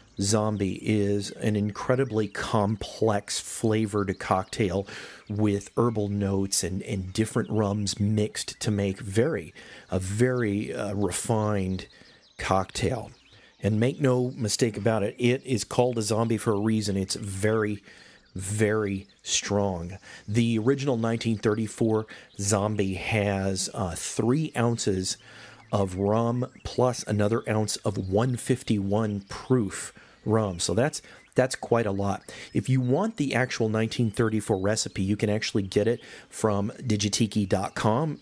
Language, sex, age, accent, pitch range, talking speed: English, male, 40-59, American, 100-120 Hz, 120 wpm